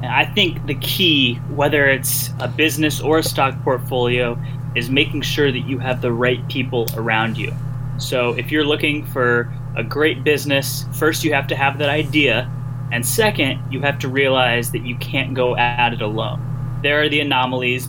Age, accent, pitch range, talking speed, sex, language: 10-29, American, 125-140 Hz, 185 wpm, male, English